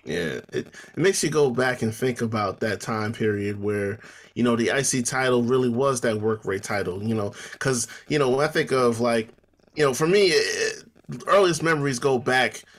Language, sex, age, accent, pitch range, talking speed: English, male, 20-39, American, 115-135 Hz, 210 wpm